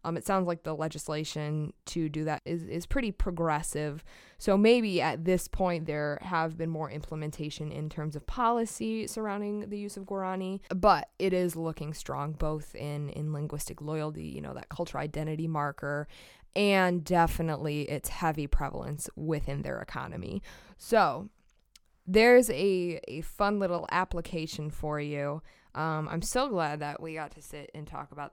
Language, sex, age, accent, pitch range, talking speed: English, female, 20-39, American, 150-185 Hz, 165 wpm